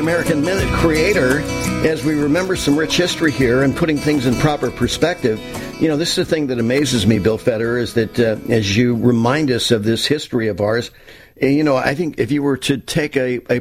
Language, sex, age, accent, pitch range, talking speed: English, male, 50-69, American, 115-140 Hz, 220 wpm